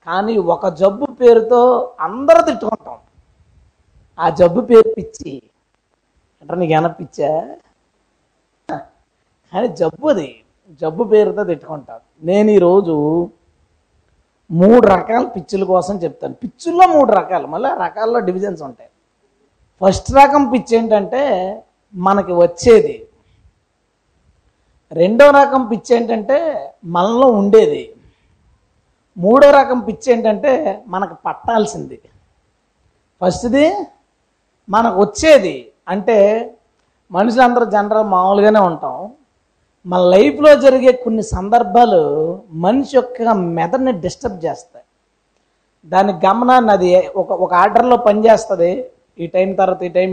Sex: female